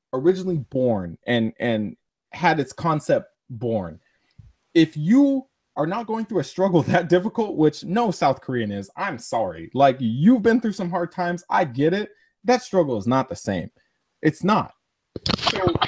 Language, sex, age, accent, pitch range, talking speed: English, male, 20-39, American, 130-190 Hz, 165 wpm